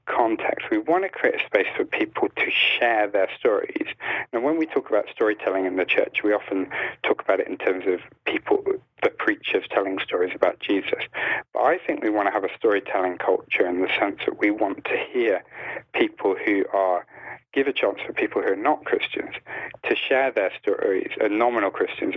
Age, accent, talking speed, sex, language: 40-59, British, 200 wpm, male, English